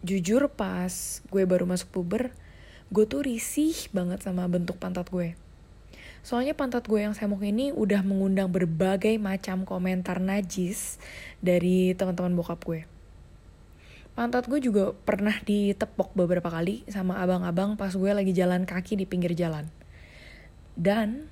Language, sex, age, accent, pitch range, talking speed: Indonesian, female, 20-39, native, 175-220 Hz, 135 wpm